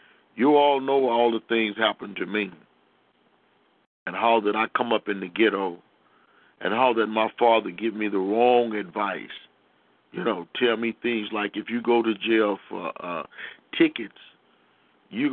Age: 50-69